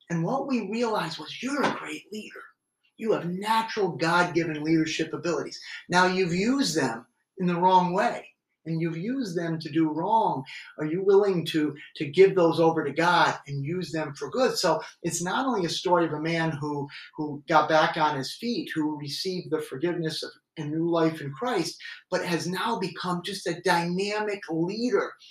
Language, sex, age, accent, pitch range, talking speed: English, male, 30-49, American, 155-185 Hz, 185 wpm